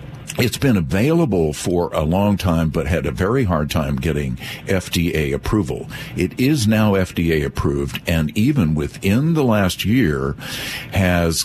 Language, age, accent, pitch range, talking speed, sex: English, 50-69, American, 85-125 Hz, 145 wpm, male